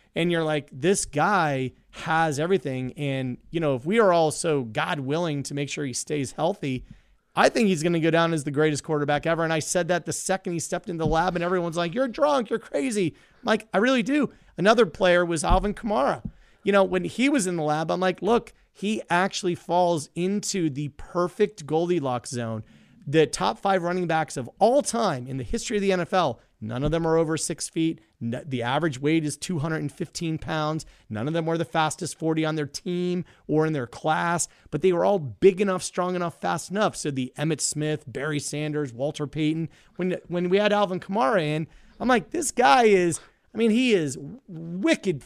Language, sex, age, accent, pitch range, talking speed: English, male, 30-49, American, 150-195 Hz, 210 wpm